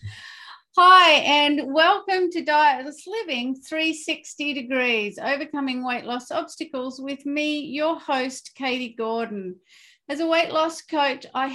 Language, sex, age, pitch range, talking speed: English, female, 40-59, 220-285 Hz, 125 wpm